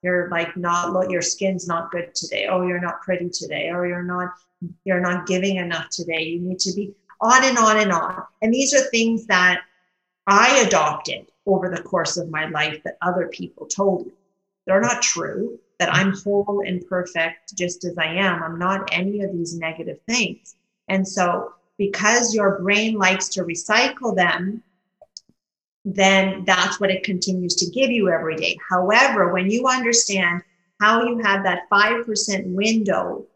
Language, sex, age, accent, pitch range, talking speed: English, female, 40-59, American, 180-210 Hz, 175 wpm